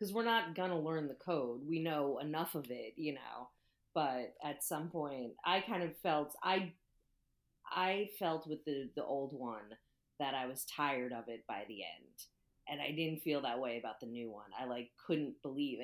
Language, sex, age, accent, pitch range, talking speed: English, female, 30-49, American, 125-160 Hz, 200 wpm